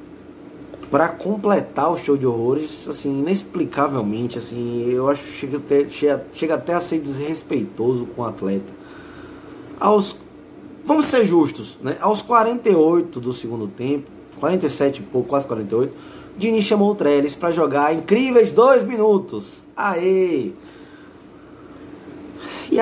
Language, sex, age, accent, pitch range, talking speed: Portuguese, male, 20-39, Brazilian, 140-210 Hz, 120 wpm